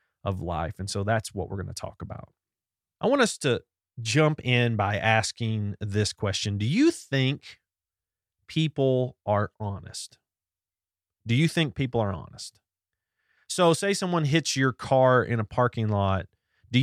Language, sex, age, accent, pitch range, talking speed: English, male, 30-49, American, 95-130 Hz, 155 wpm